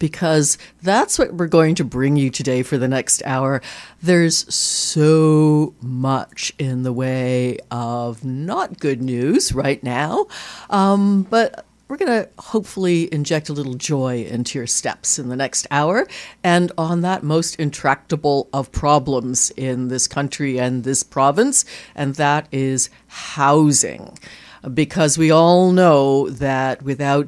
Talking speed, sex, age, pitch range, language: 145 wpm, female, 60-79, 130-160 Hz, English